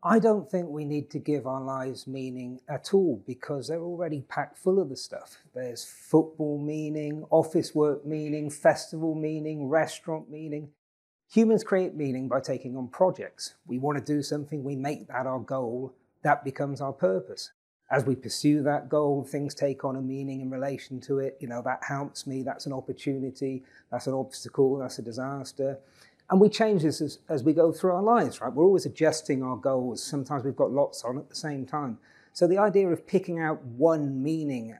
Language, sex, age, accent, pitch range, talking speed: English, male, 40-59, British, 130-155 Hz, 195 wpm